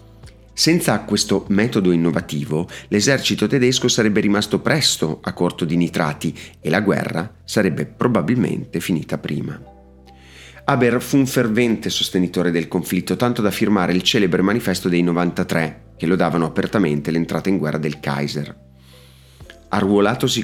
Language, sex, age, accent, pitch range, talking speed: Italian, male, 40-59, native, 80-110 Hz, 130 wpm